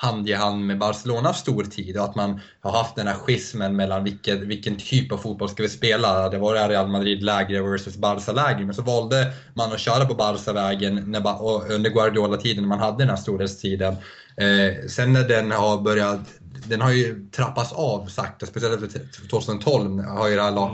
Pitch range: 100-125 Hz